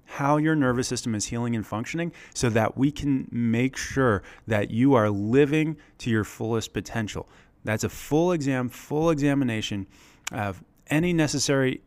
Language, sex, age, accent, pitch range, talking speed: English, male, 30-49, American, 105-140 Hz, 155 wpm